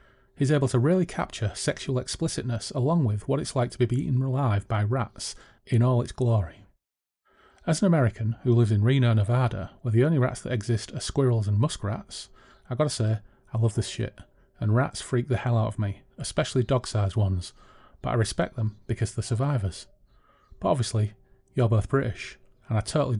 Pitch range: 105-130 Hz